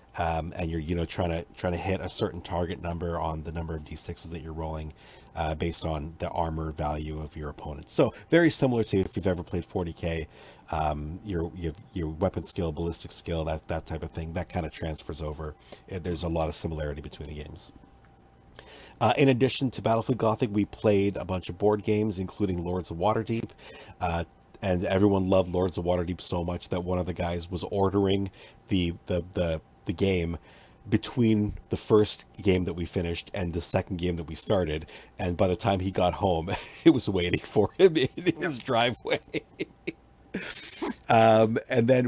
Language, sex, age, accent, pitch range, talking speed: English, male, 40-59, American, 85-100 Hz, 195 wpm